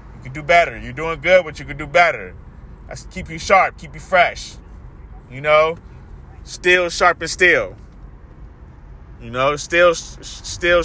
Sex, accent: male, American